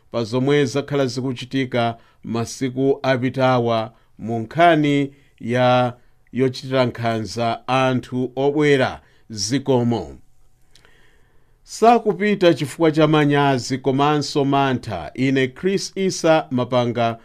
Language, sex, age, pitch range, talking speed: English, male, 50-69, 125-155 Hz, 85 wpm